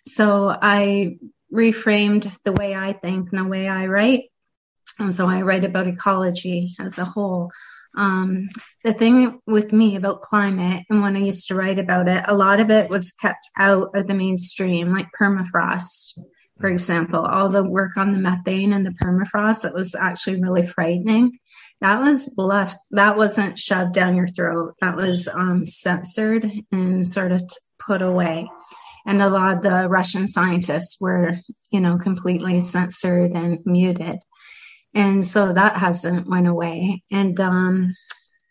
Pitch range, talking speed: 180-200 Hz, 160 wpm